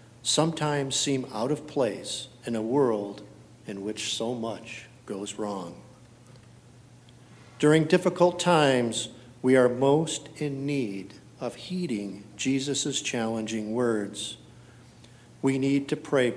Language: English